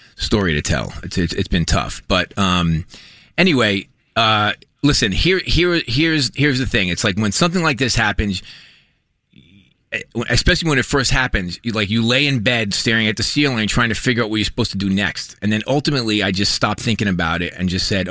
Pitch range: 95-120 Hz